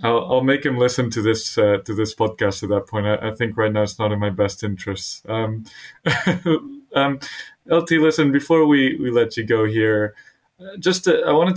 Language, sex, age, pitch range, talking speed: English, male, 20-39, 105-130 Hz, 205 wpm